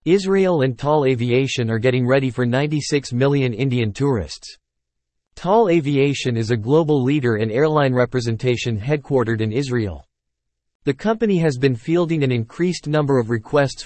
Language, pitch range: English, 115-150 Hz